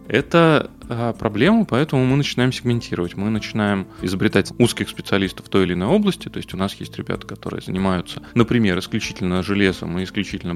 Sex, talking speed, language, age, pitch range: male, 165 wpm, Russian, 30-49, 95-120 Hz